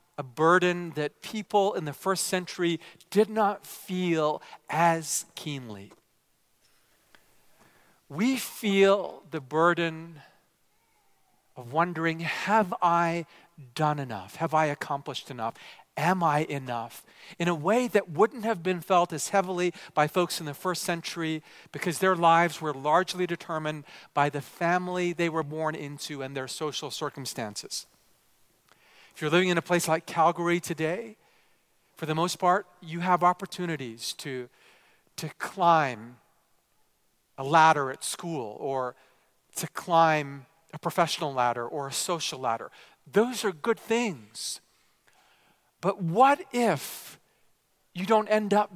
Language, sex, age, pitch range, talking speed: English, male, 50-69, 150-185 Hz, 130 wpm